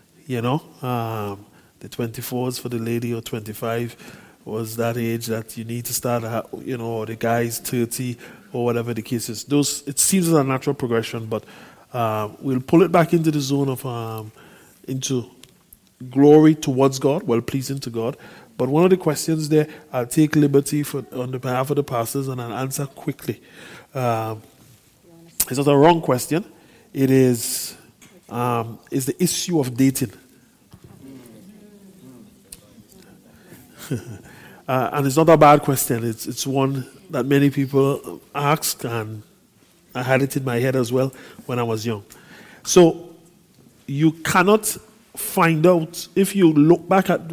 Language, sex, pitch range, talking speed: English, male, 120-155 Hz, 165 wpm